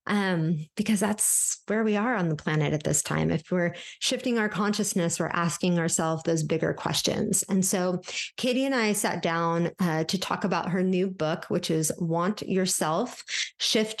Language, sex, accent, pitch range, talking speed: English, female, American, 175-215 Hz, 180 wpm